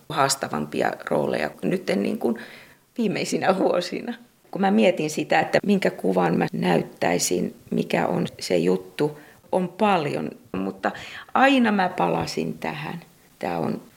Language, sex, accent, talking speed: Finnish, female, native, 120 wpm